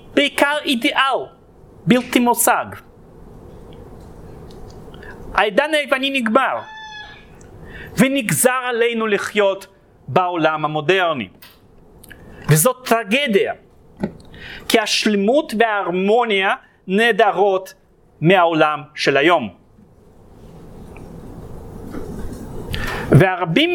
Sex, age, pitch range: male, 40-59, 195-270 Hz